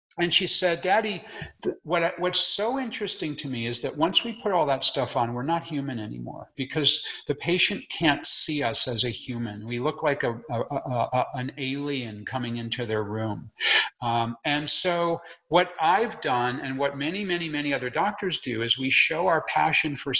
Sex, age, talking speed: male, 50-69, 195 wpm